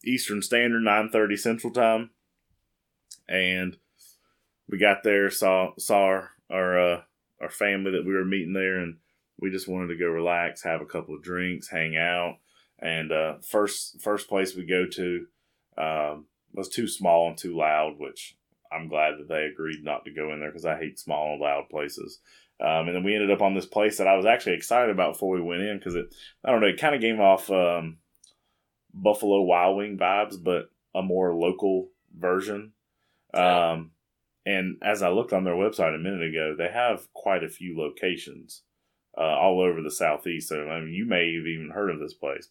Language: English